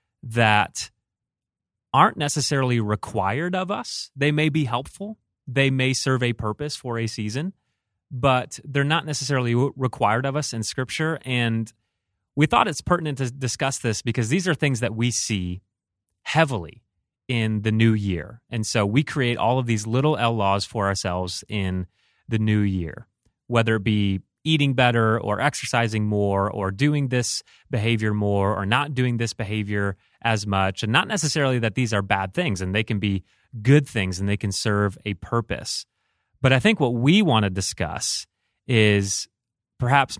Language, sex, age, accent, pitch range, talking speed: English, male, 30-49, American, 100-130 Hz, 170 wpm